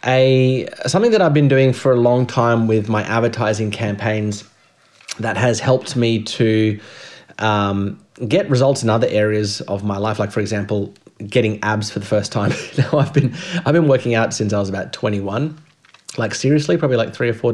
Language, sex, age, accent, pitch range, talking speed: English, male, 30-49, Australian, 100-125 Hz, 190 wpm